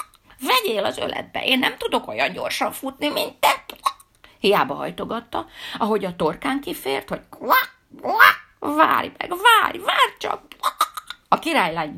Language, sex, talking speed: Hungarian, female, 125 wpm